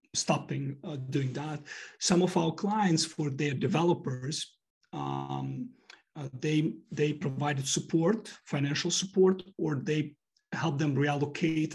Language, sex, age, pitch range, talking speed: English, male, 40-59, 140-165 Hz, 125 wpm